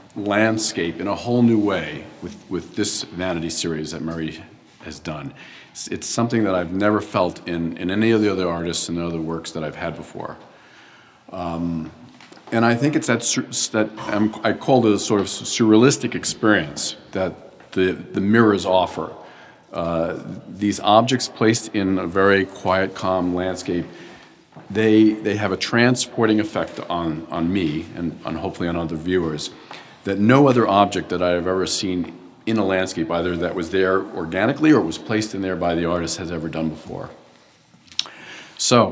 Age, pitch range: 50-69, 85-105 Hz